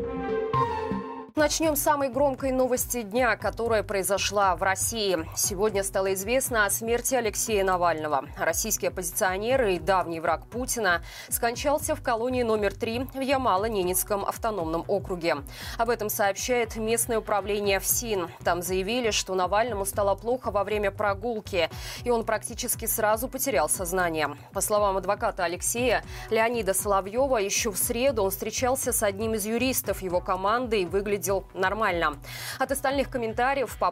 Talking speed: 135 wpm